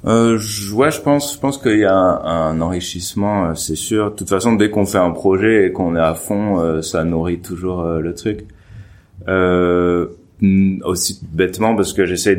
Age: 30-49